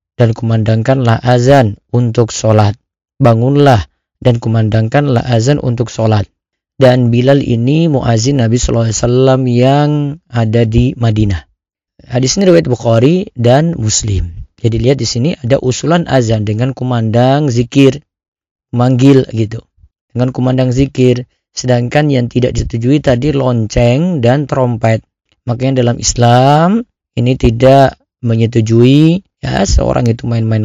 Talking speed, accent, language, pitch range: 115 wpm, native, Indonesian, 115-130 Hz